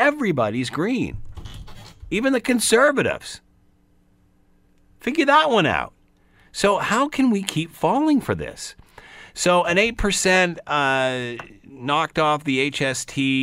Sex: male